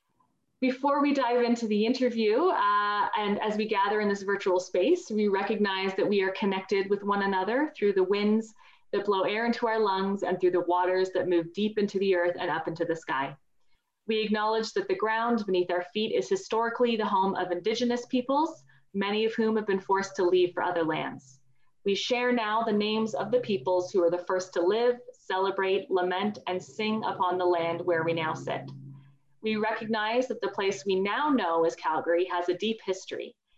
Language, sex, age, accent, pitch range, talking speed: English, female, 30-49, American, 180-225 Hz, 200 wpm